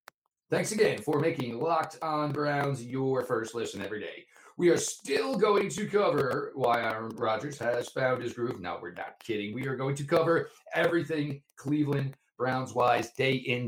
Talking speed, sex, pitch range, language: 175 wpm, male, 125-175 Hz, English